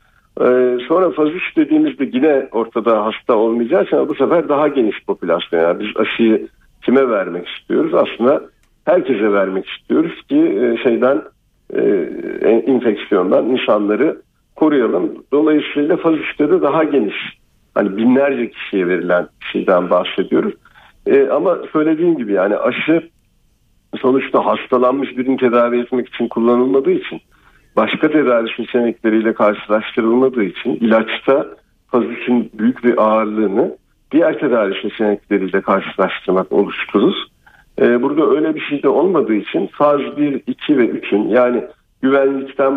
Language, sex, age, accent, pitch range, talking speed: Turkish, male, 50-69, native, 110-145 Hz, 115 wpm